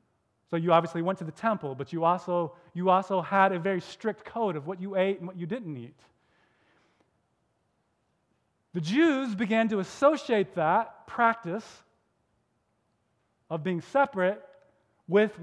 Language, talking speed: English, 145 wpm